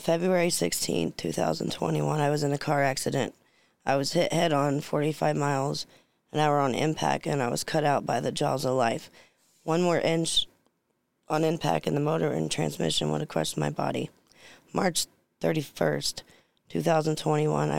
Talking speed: 160 wpm